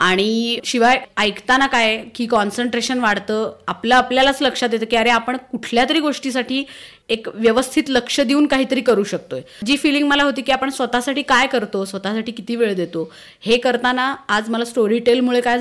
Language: Marathi